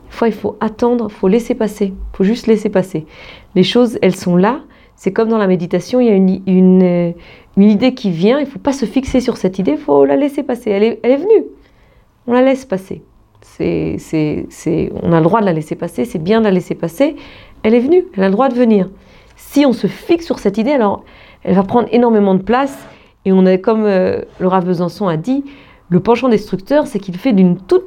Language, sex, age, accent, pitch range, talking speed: French, female, 40-59, French, 190-255 Hz, 240 wpm